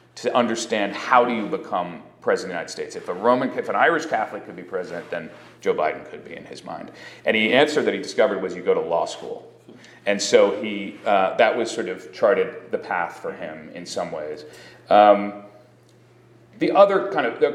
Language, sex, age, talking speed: English, male, 40-59, 215 wpm